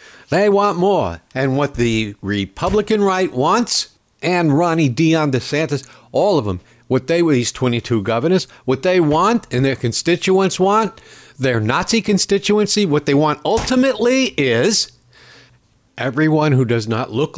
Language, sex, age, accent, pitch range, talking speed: English, male, 60-79, American, 110-165 Hz, 145 wpm